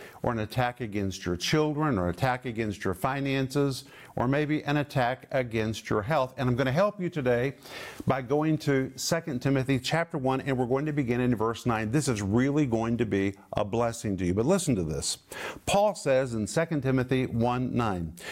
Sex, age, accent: male, 50-69, American